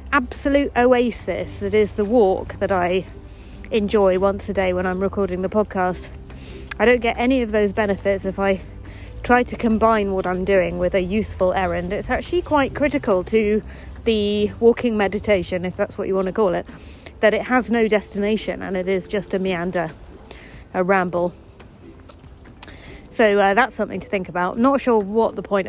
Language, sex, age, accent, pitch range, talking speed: English, female, 30-49, British, 180-230 Hz, 180 wpm